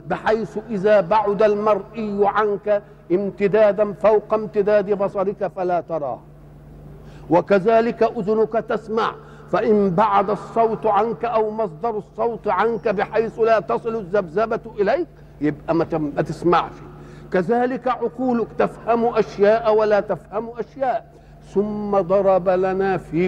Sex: male